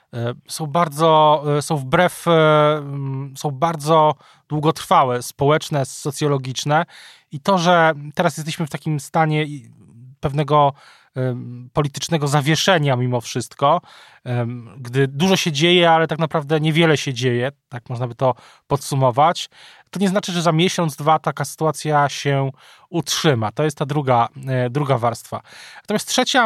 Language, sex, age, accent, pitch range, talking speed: Polish, male, 20-39, native, 135-165 Hz, 125 wpm